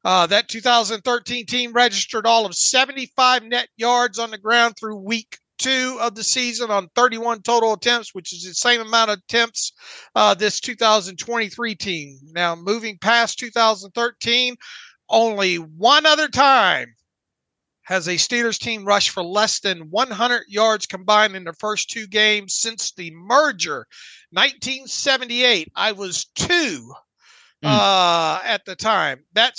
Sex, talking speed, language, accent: male, 140 wpm, English, American